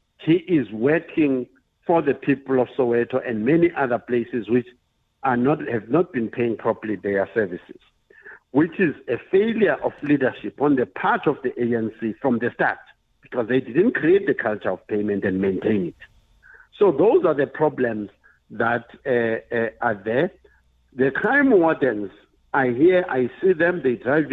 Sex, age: male, 60-79